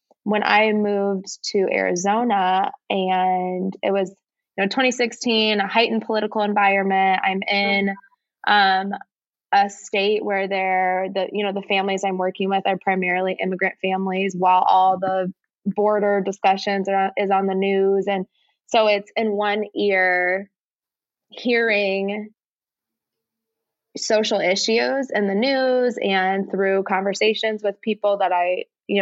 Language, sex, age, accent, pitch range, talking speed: English, female, 20-39, American, 185-210 Hz, 130 wpm